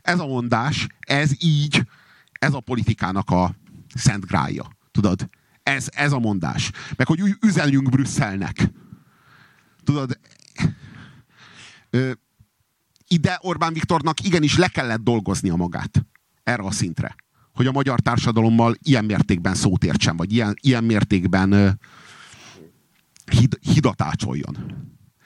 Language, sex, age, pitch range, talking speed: Hungarian, male, 50-69, 110-150 Hz, 110 wpm